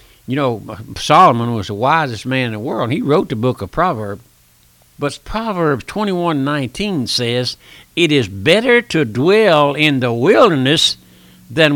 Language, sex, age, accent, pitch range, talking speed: English, male, 60-79, American, 125-200 Hz, 160 wpm